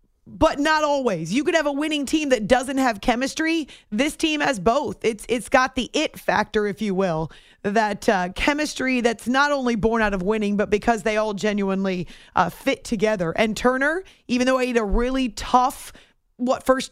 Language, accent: English, American